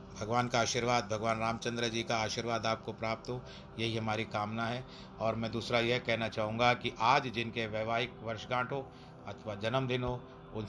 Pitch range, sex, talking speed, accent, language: 110-130 Hz, male, 180 wpm, native, Hindi